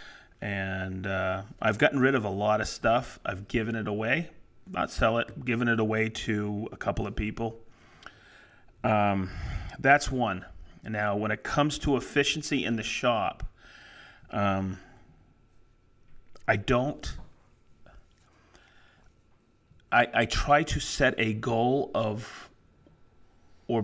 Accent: American